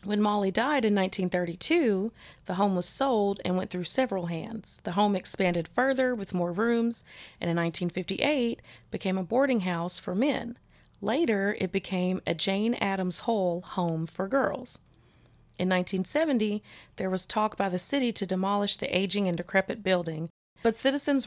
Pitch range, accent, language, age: 175-210 Hz, American, English, 30-49